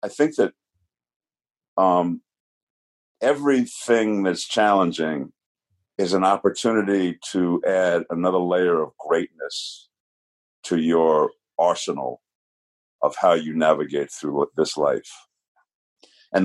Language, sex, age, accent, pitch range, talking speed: English, male, 50-69, American, 80-105 Hz, 100 wpm